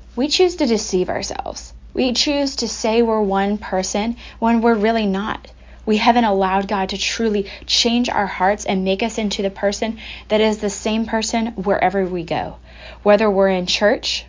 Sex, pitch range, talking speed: female, 185-235 Hz, 180 wpm